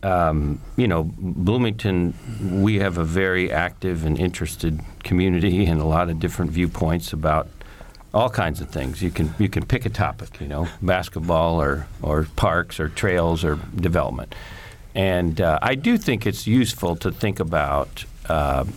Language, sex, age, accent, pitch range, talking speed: English, male, 50-69, American, 85-110 Hz, 165 wpm